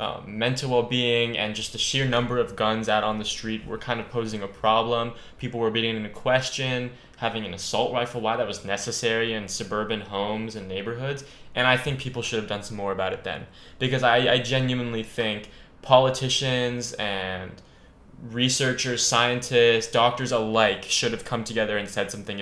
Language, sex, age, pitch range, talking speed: English, male, 10-29, 105-125 Hz, 185 wpm